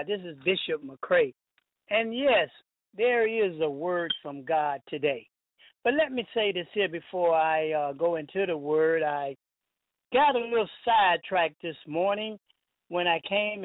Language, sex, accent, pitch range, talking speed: English, male, American, 165-230 Hz, 160 wpm